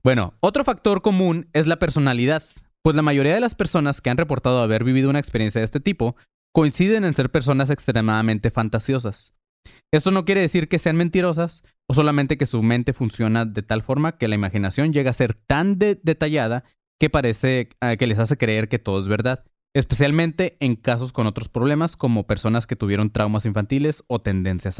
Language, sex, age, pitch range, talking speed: Spanish, male, 20-39, 110-150 Hz, 190 wpm